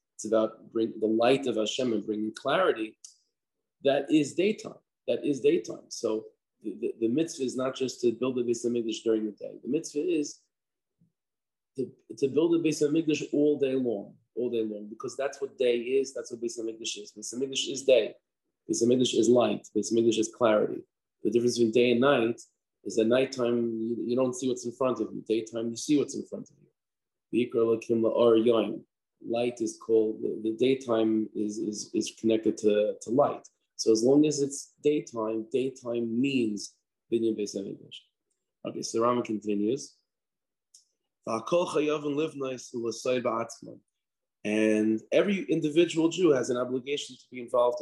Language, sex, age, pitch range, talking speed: English, male, 30-49, 110-140 Hz, 155 wpm